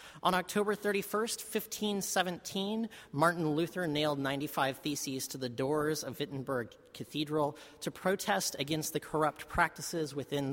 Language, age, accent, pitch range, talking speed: English, 30-49, American, 130-165 Hz, 125 wpm